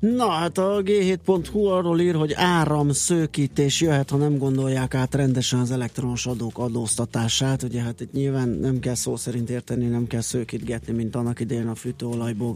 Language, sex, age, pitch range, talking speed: Hungarian, male, 30-49, 110-130 Hz, 170 wpm